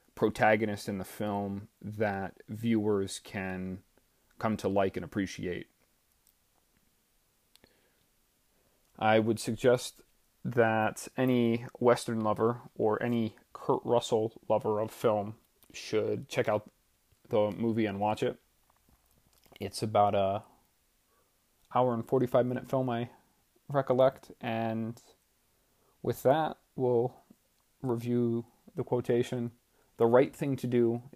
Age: 30-49